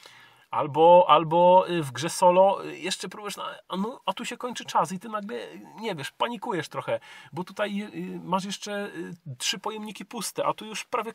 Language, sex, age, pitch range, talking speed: Polish, male, 40-59, 170-215 Hz, 165 wpm